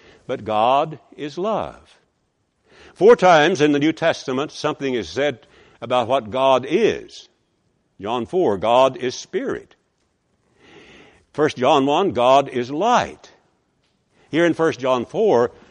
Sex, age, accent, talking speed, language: male, 60-79, American, 125 wpm, English